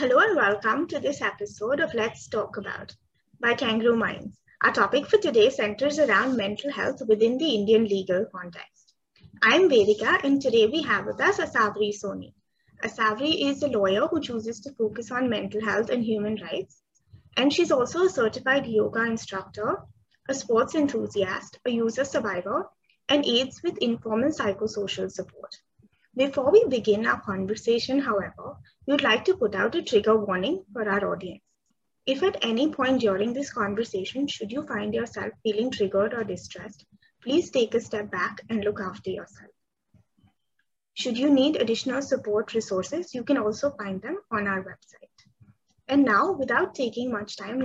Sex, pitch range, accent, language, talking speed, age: female, 210-275 Hz, Indian, English, 165 wpm, 20-39